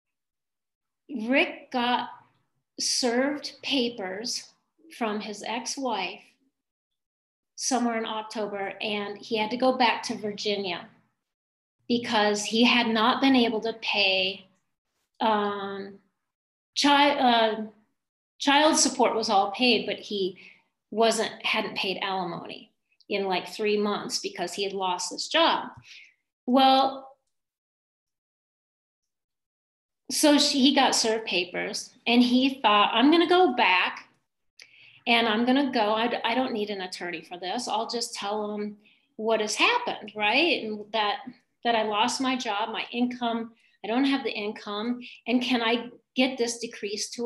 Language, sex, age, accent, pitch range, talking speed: English, female, 40-59, American, 210-255 Hz, 135 wpm